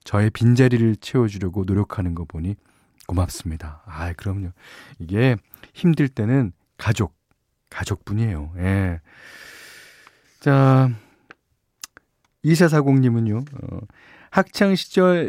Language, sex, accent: Korean, male, native